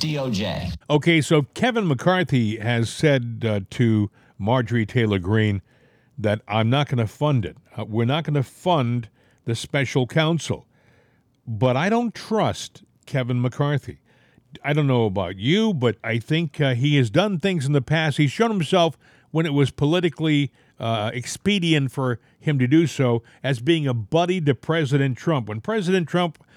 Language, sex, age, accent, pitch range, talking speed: English, male, 50-69, American, 120-155 Hz, 165 wpm